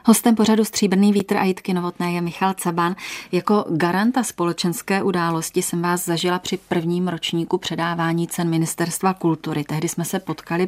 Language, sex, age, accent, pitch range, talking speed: Czech, female, 30-49, native, 160-180 Hz, 155 wpm